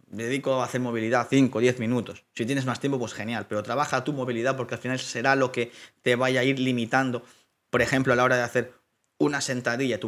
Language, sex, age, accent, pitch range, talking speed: Spanish, male, 20-39, Spanish, 115-135 Hz, 230 wpm